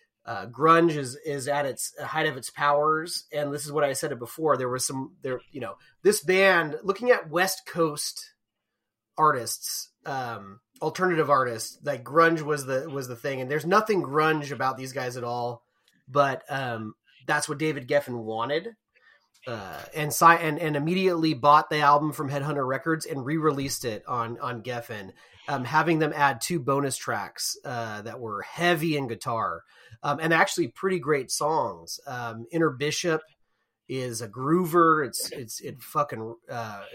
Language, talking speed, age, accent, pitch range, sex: English, 170 wpm, 30-49, American, 125-160 Hz, male